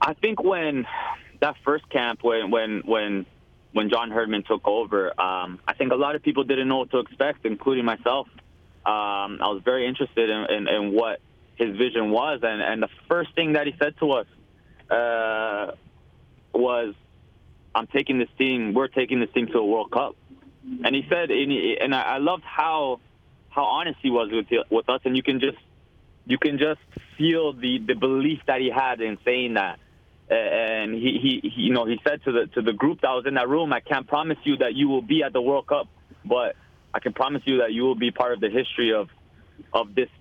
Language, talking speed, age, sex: English, 215 wpm, 20-39, male